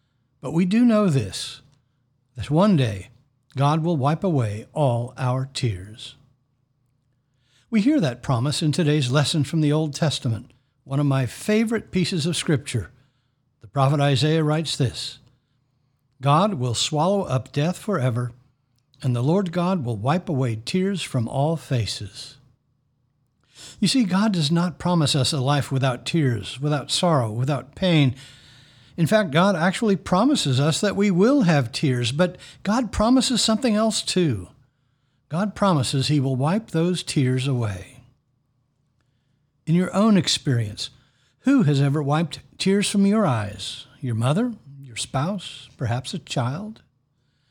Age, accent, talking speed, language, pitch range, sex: 60-79, American, 145 wpm, English, 130-165 Hz, male